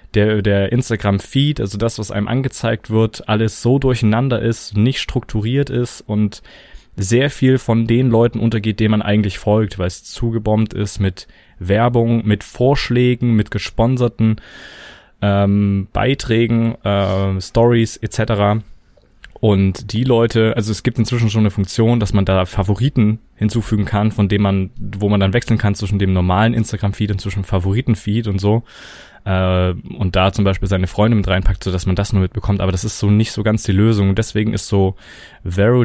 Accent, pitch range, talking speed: German, 100-115 Hz, 175 wpm